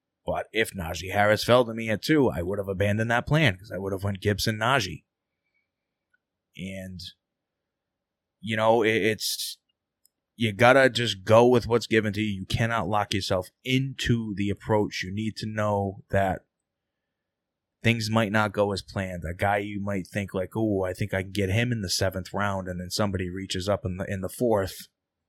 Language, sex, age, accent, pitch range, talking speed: English, male, 20-39, American, 100-125 Hz, 190 wpm